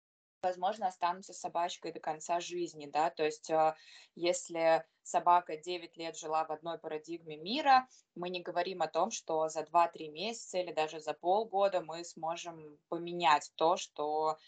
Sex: female